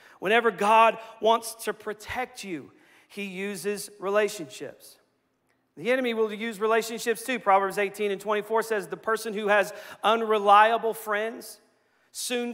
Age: 40-59